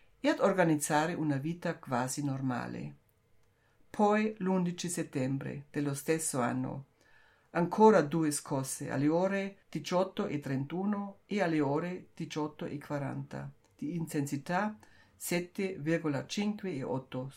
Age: 60-79